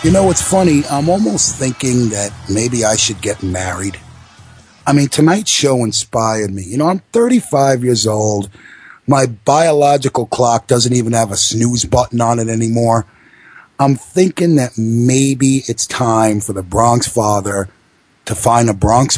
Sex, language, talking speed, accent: male, English, 160 wpm, American